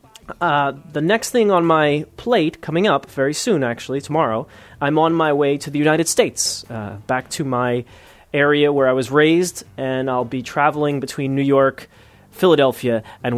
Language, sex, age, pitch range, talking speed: English, male, 30-49, 125-165 Hz, 175 wpm